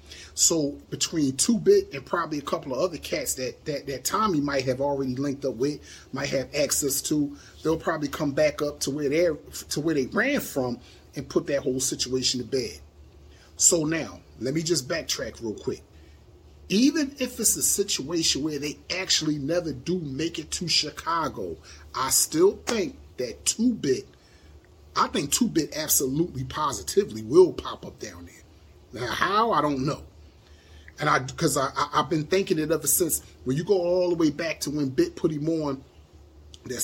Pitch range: 125-160 Hz